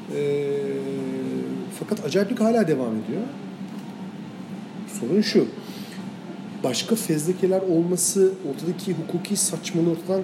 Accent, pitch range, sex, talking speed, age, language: native, 160-205 Hz, male, 90 wpm, 40-59, Turkish